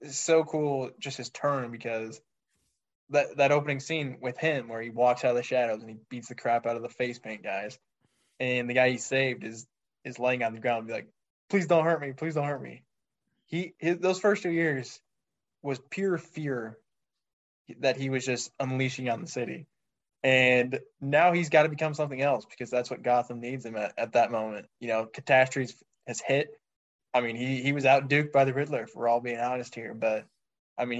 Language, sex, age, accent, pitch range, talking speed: English, male, 20-39, American, 115-140 Hz, 215 wpm